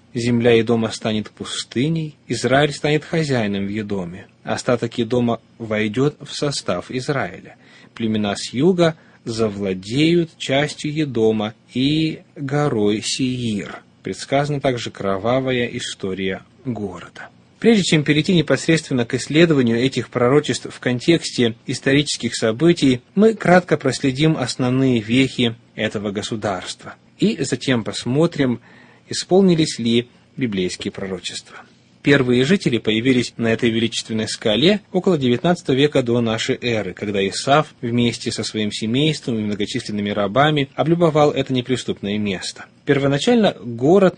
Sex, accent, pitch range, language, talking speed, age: male, native, 115-145 Hz, Russian, 110 wpm, 20-39